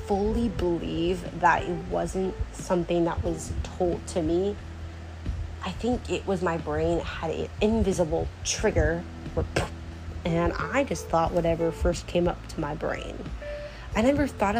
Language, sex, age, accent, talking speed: English, female, 20-39, American, 145 wpm